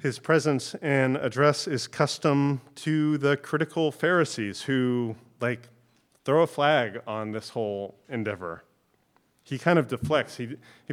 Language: English